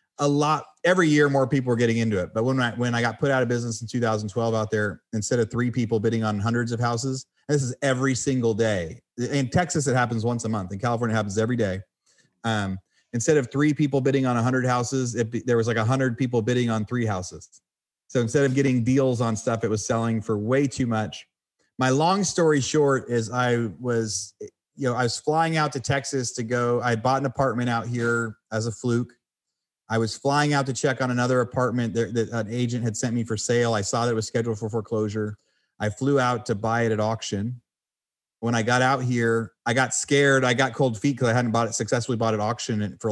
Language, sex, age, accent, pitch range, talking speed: English, male, 30-49, American, 115-135 Hz, 230 wpm